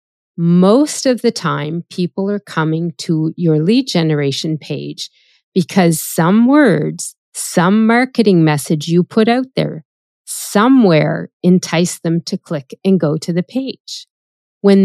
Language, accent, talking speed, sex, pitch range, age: English, American, 135 wpm, female, 170-220 Hz, 40-59